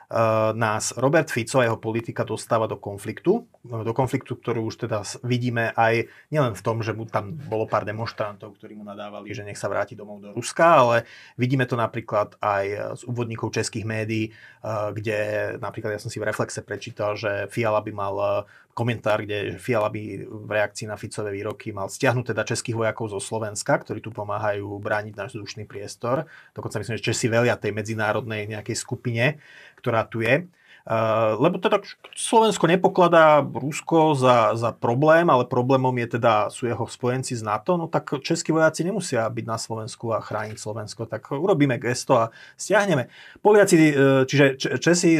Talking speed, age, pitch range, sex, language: 165 wpm, 30-49, 110-135 Hz, male, Slovak